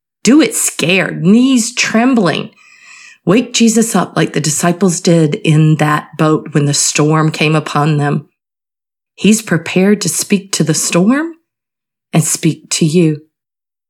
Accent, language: American, English